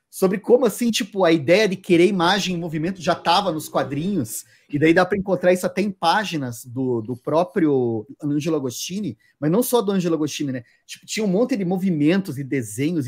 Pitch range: 160-230 Hz